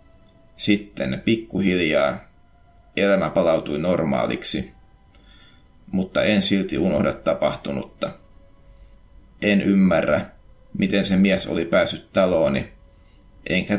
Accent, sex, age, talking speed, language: native, male, 30-49, 85 wpm, Finnish